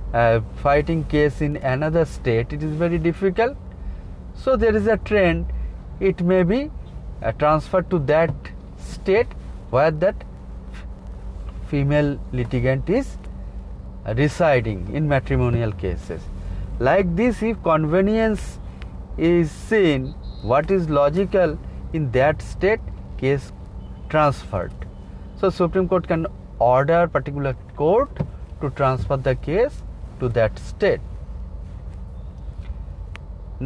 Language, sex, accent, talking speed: English, male, Indian, 105 wpm